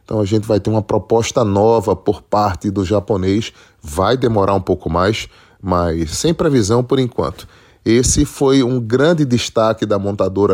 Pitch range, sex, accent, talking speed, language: 100-125 Hz, male, Brazilian, 165 wpm, Portuguese